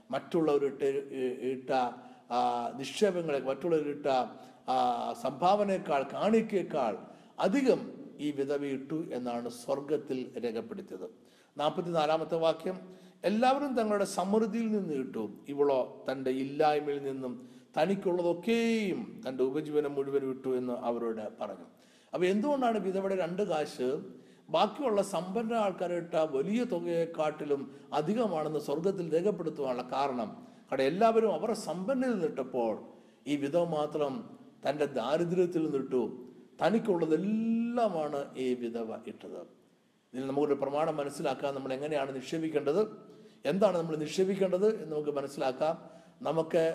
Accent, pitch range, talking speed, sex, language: native, 135-190 Hz, 100 wpm, male, Malayalam